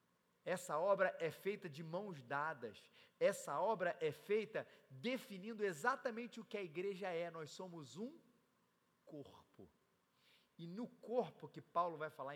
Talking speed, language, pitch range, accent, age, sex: 140 wpm, Portuguese, 135-200 Hz, Brazilian, 40-59, male